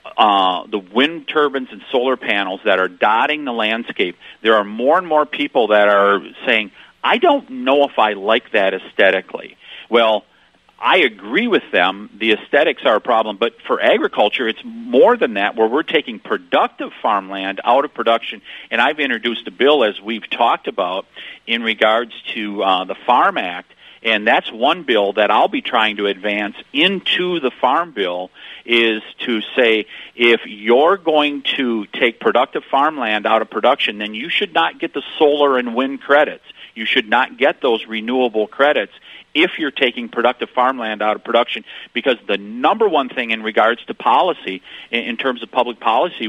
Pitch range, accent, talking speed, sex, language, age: 105-135 Hz, American, 175 wpm, male, English, 50-69